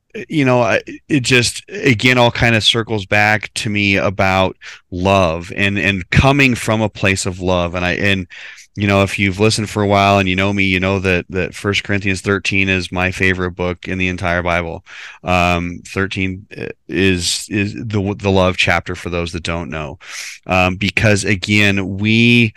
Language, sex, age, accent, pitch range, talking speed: English, male, 30-49, American, 95-110 Hz, 185 wpm